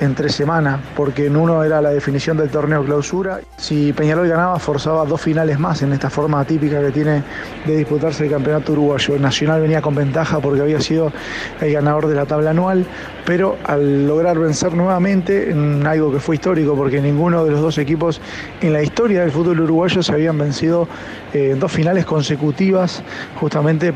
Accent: Argentinian